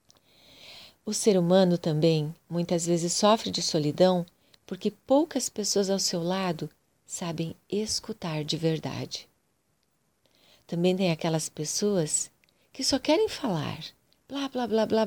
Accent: Brazilian